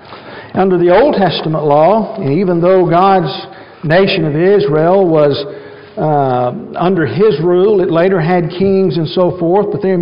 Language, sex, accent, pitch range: English, male, American, 160-205 Hz